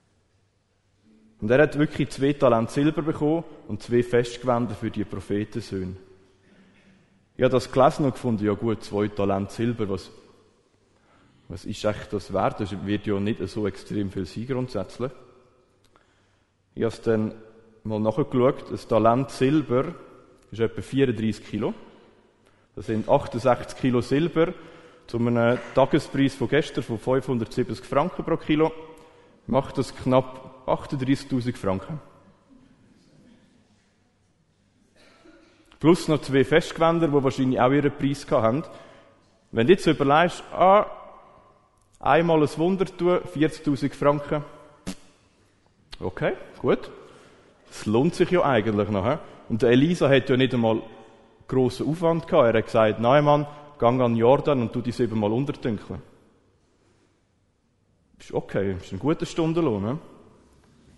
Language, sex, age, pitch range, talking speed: German, male, 30-49, 105-145 Hz, 130 wpm